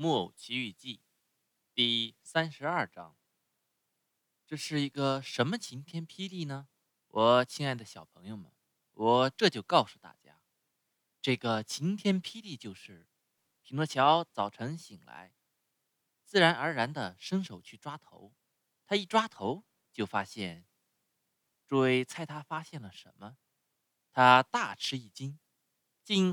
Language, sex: Chinese, male